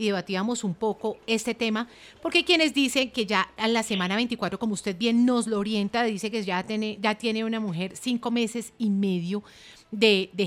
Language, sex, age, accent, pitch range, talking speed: Spanish, female, 30-49, Colombian, 200-240 Hz, 205 wpm